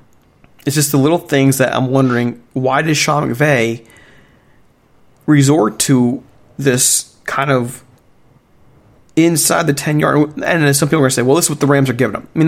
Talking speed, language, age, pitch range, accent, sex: 185 wpm, English, 40-59, 120-145 Hz, American, male